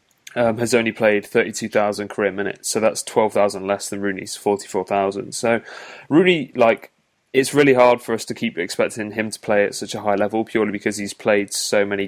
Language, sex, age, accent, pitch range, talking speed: English, male, 20-39, British, 100-110 Hz, 210 wpm